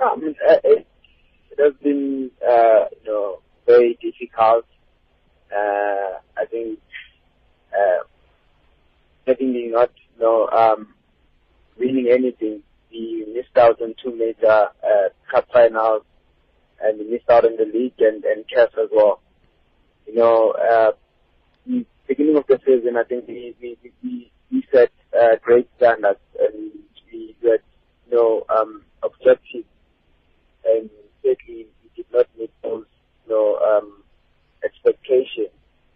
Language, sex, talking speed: English, male, 130 wpm